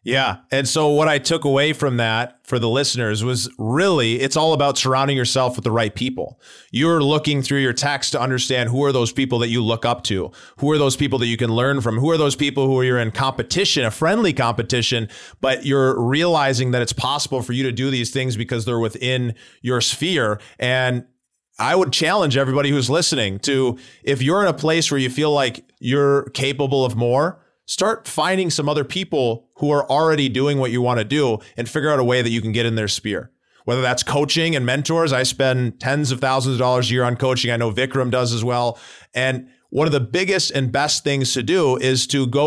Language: English